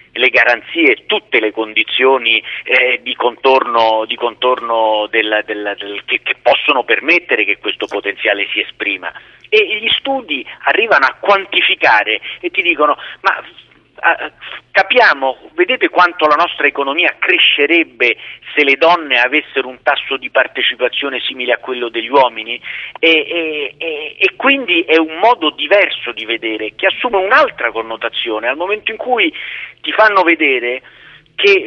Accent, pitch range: native, 125-200 Hz